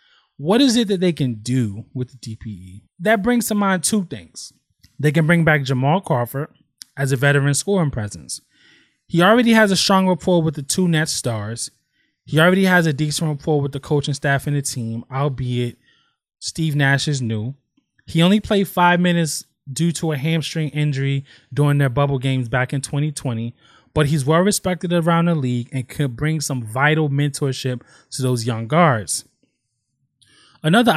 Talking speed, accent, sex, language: 175 wpm, American, male, English